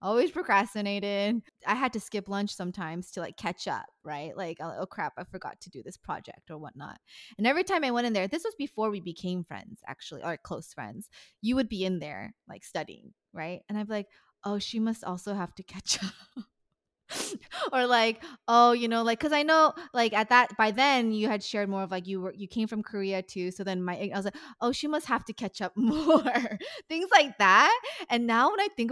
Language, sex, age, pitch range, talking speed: English, female, 20-39, 185-245 Hz, 230 wpm